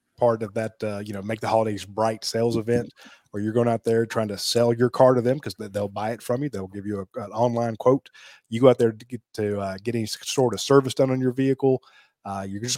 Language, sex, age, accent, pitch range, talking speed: English, male, 20-39, American, 110-125 Hz, 270 wpm